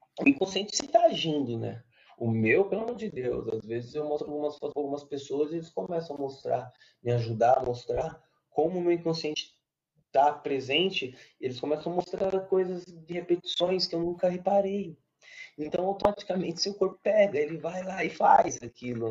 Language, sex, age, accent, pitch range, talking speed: Portuguese, male, 20-39, Brazilian, 135-180 Hz, 180 wpm